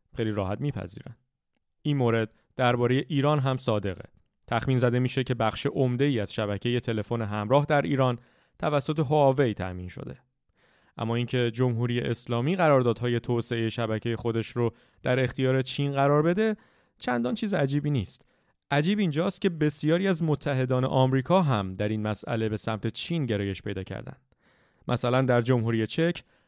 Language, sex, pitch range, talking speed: Persian, male, 110-135 Hz, 145 wpm